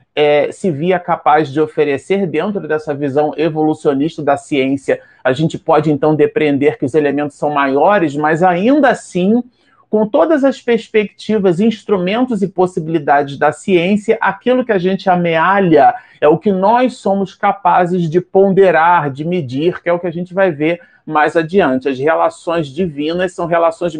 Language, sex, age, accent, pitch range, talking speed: Portuguese, male, 40-59, Brazilian, 165-210 Hz, 160 wpm